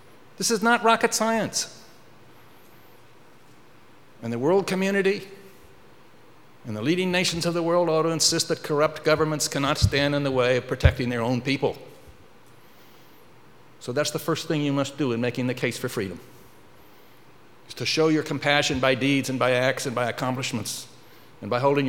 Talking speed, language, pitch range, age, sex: 170 wpm, English, 125-150 Hz, 60-79, male